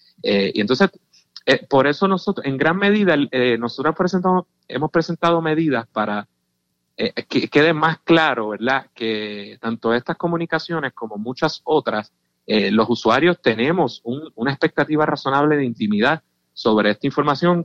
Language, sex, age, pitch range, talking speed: Spanish, male, 30-49, 115-160 Hz, 145 wpm